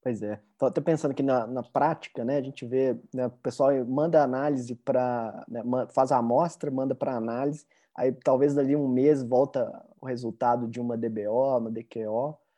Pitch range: 125-155 Hz